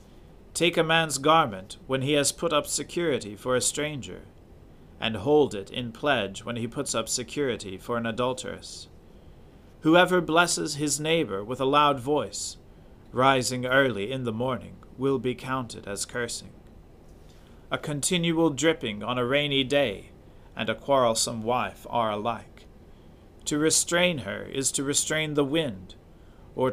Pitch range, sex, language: 105-145 Hz, male, English